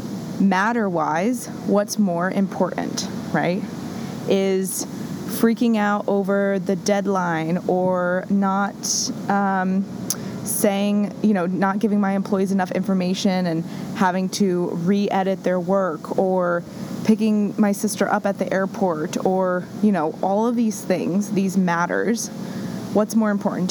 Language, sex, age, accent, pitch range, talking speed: English, female, 20-39, American, 185-210 Hz, 125 wpm